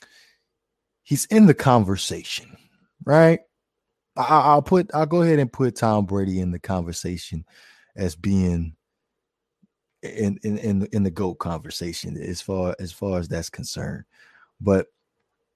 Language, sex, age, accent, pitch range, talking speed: English, male, 20-39, American, 90-115 Hz, 130 wpm